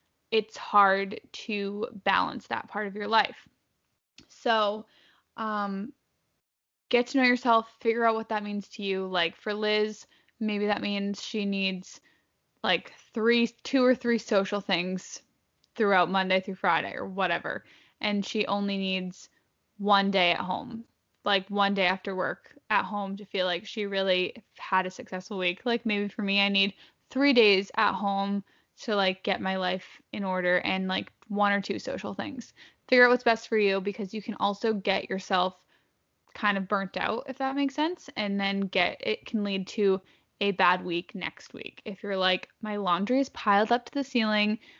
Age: 10-29